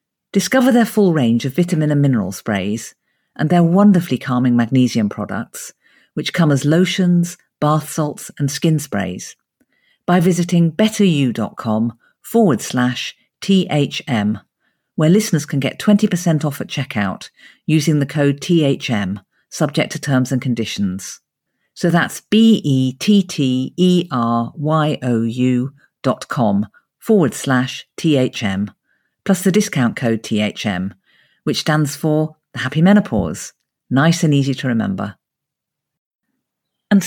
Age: 50-69